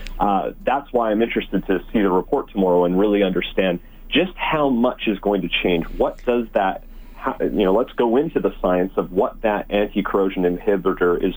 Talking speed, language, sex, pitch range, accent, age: 195 wpm, English, male, 95-115 Hz, American, 40-59